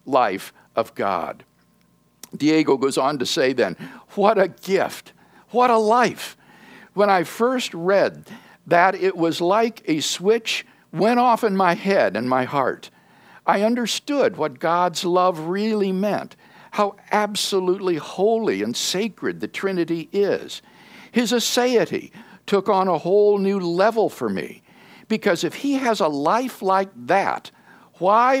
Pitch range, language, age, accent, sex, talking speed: 170-220 Hz, English, 60-79, American, male, 140 wpm